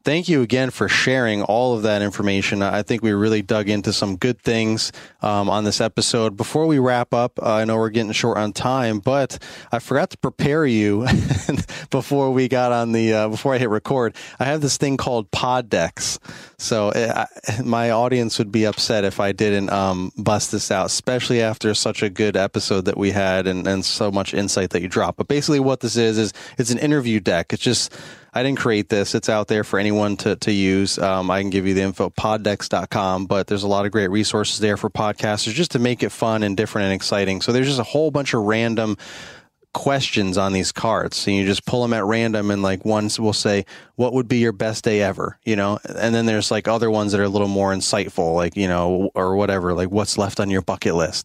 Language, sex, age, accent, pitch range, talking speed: English, male, 30-49, American, 100-120 Hz, 230 wpm